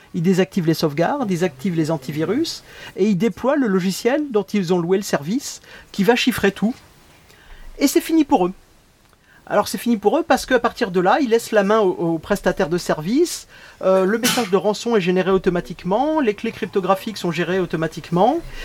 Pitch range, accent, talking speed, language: 175-225 Hz, French, 195 wpm, French